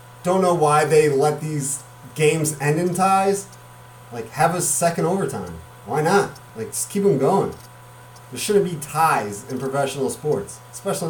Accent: American